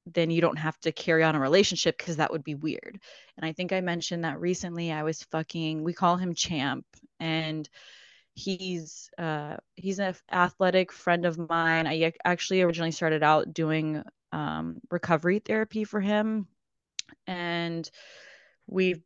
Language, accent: English, American